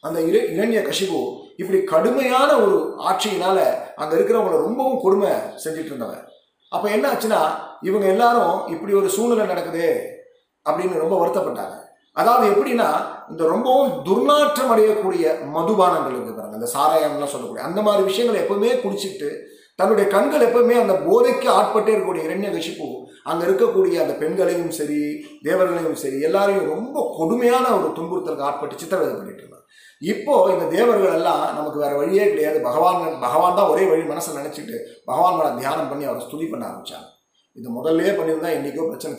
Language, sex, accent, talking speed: Tamil, male, native, 140 wpm